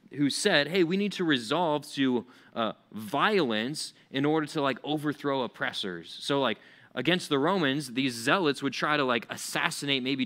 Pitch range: 135-170 Hz